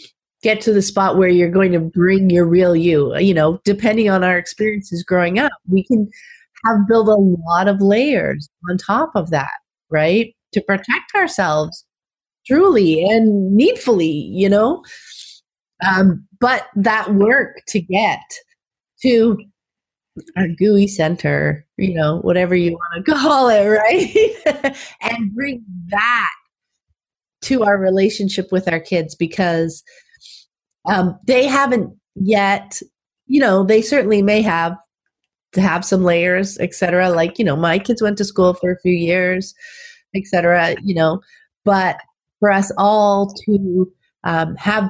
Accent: American